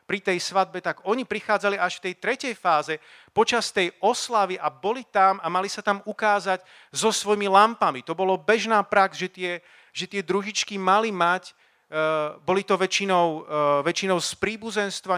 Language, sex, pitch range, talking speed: Slovak, male, 165-200 Hz, 160 wpm